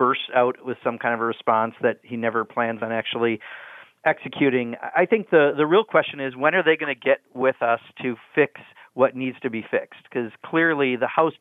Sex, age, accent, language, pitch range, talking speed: male, 40-59, American, English, 115-140 Hz, 215 wpm